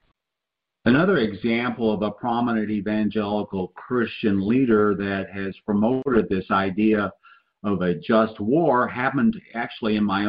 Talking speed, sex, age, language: 120 wpm, male, 50-69, English